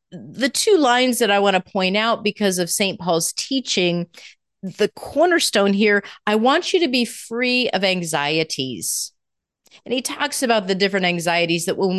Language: English